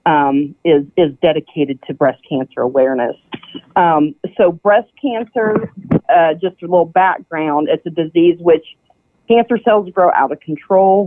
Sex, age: female, 40-59